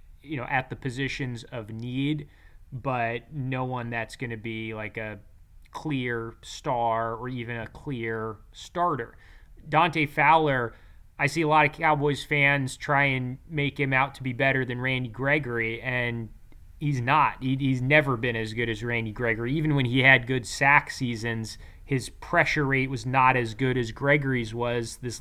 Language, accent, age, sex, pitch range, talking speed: English, American, 20-39, male, 120-145 Hz, 175 wpm